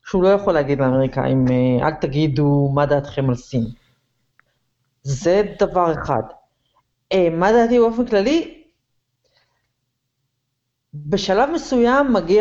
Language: Hebrew